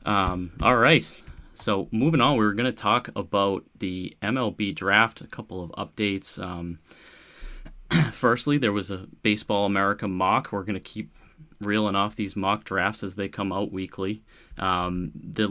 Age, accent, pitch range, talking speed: 30-49, American, 90-105 Hz, 165 wpm